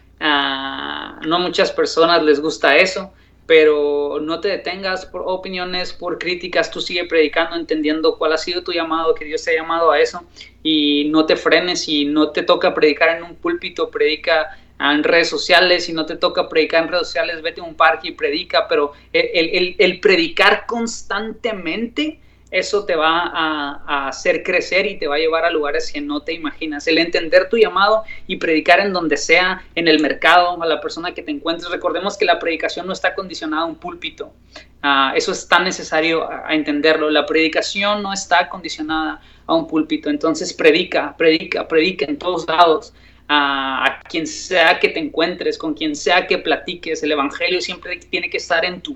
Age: 20-39